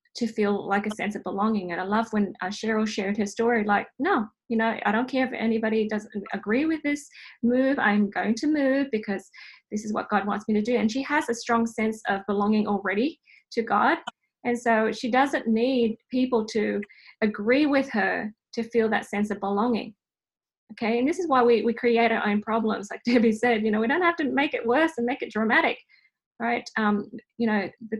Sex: female